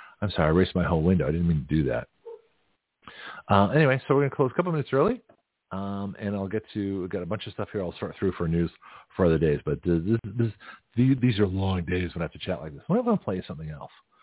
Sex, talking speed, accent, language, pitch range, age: male, 280 wpm, American, English, 85-110 Hz, 40-59